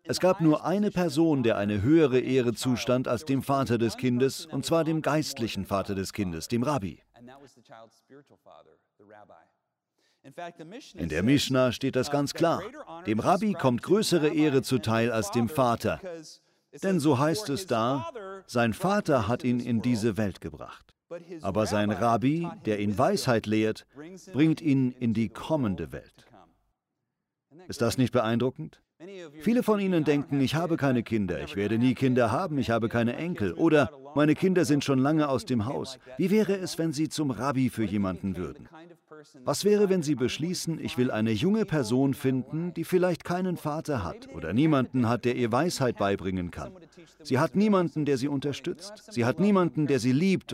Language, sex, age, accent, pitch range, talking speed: German, male, 50-69, German, 120-165 Hz, 170 wpm